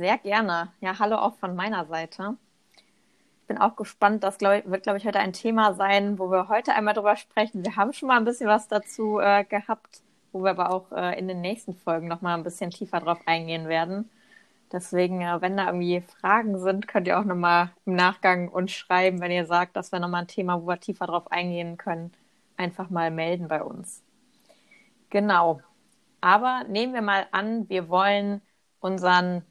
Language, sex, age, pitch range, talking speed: German, female, 20-39, 180-210 Hz, 190 wpm